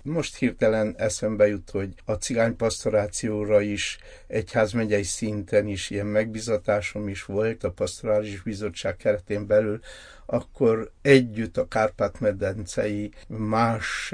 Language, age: Hungarian, 60-79